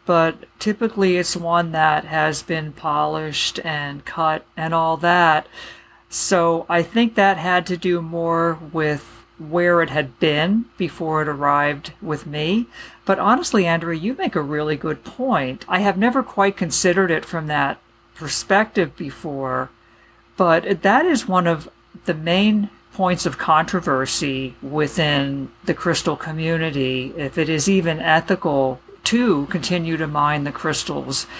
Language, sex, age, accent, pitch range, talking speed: English, female, 50-69, American, 155-190 Hz, 145 wpm